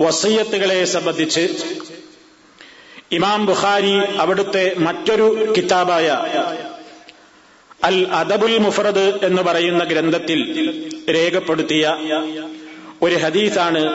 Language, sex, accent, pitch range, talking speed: Malayalam, male, native, 160-210 Hz, 70 wpm